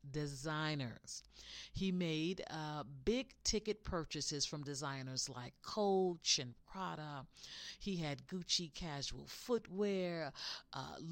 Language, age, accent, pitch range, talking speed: English, 40-59, American, 145-205 Hz, 105 wpm